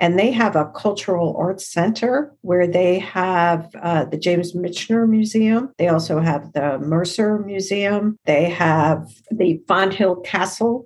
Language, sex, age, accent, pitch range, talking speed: English, female, 50-69, American, 160-195 Hz, 150 wpm